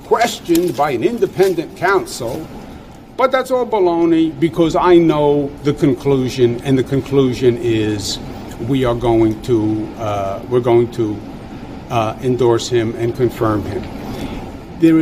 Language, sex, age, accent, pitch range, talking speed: English, male, 50-69, American, 115-145 Hz, 130 wpm